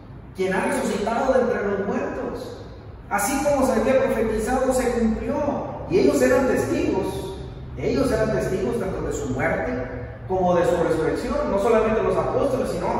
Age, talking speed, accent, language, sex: 30-49, 155 wpm, Mexican, Spanish, male